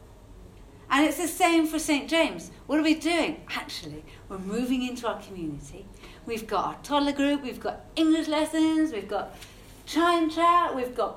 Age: 40-59